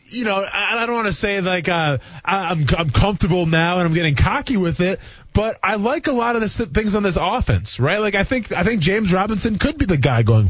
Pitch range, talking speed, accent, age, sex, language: 140-195 Hz, 245 wpm, American, 20-39, male, English